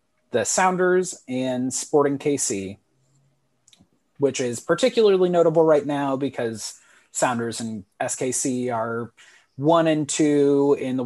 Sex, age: male, 30-49